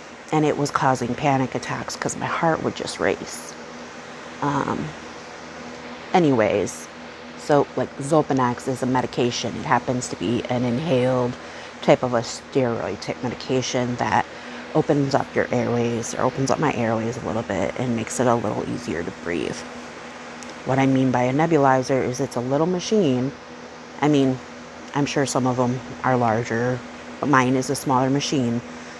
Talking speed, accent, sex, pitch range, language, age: 165 wpm, American, female, 120-135 Hz, English, 30-49